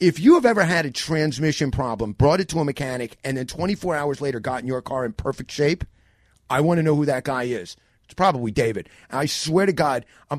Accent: American